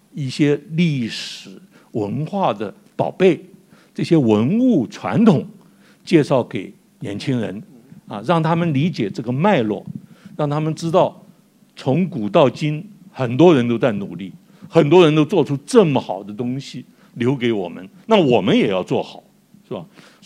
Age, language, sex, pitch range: 60-79, Chinese, male, 165-215 Hz